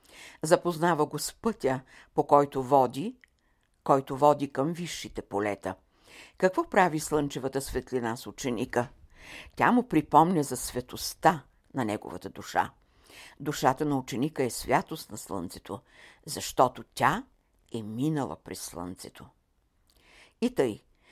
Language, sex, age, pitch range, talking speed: Bulgarian, female, 60-79, 125-170 Hz, 115 wpm